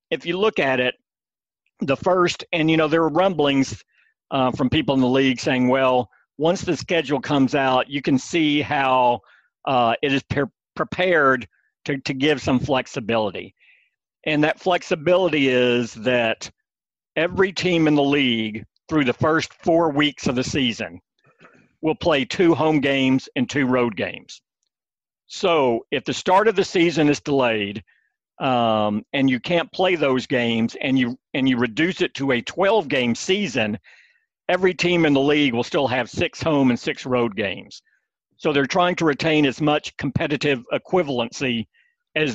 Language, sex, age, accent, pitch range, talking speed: English, male, 50-69, American, 125-165 Hz, 165 wpm